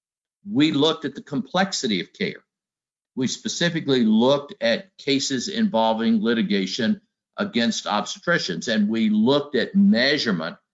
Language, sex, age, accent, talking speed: English, male, 60-79, American, 115 wpm